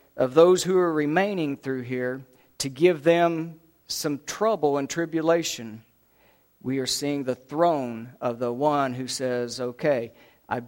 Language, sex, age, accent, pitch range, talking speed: English, male, 50-69, American, 140-185 Hz, 145 wpm